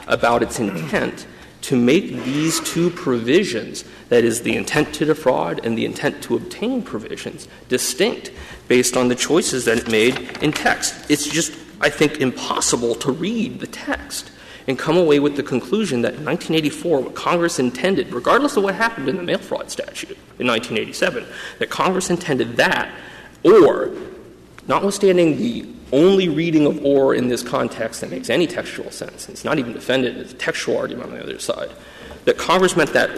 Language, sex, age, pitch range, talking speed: English, male, 40-59, 115-160 Hz, 175 wpm